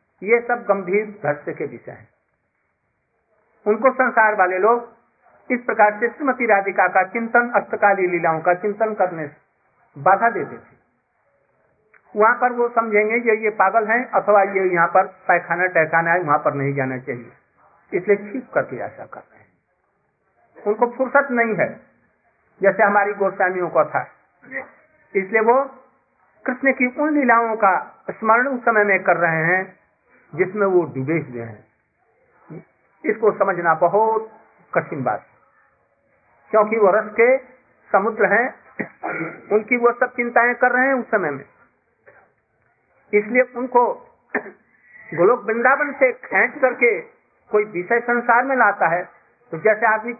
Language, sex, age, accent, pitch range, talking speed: Hindi, male, 50-69, native, 195-245 Hz, 140 wpm